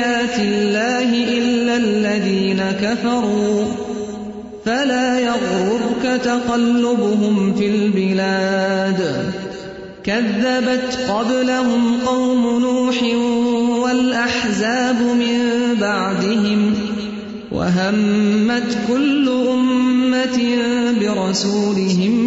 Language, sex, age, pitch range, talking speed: English, male, 30-49, 200-250 Hz, 55 wpm